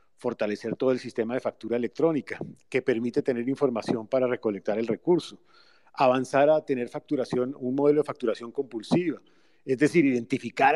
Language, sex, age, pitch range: Spanish, male, 40-59, 120-150 Hz